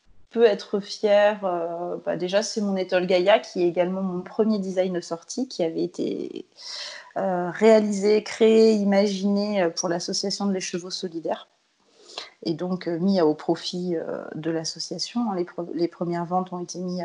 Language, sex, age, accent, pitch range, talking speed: French, female, 30-49, French, 175-210 Hz, 170 wpm